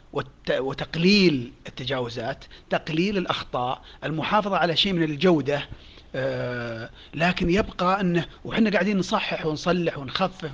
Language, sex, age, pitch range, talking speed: Arabic, male, 40-59, 135-200 Hz, 95 wpm